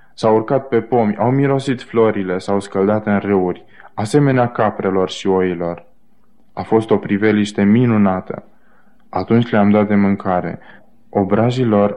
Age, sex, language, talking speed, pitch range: 20-39, male, Romanian, 130 wpm, 100-115 Hz